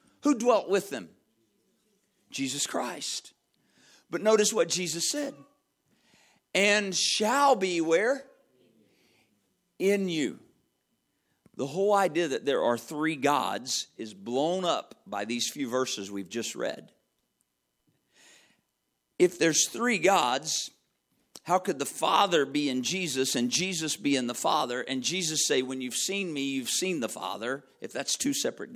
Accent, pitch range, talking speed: American, 155-235 Hz, 140 wpm